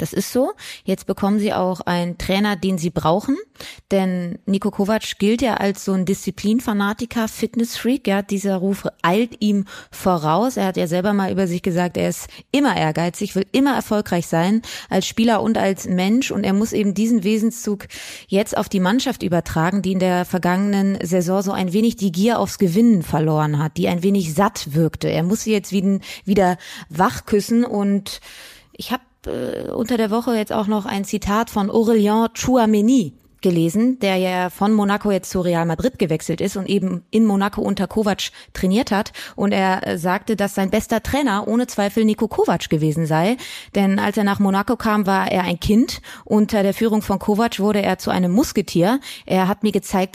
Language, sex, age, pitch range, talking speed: German, female, 20-39, 185-220 Hz, 185 wpm